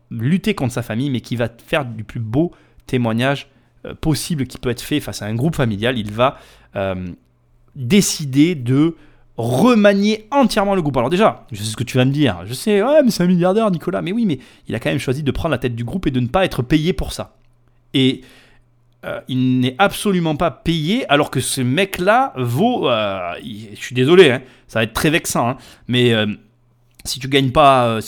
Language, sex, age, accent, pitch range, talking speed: French, male, 30-49, French, 120-185 Hz, 215 wpm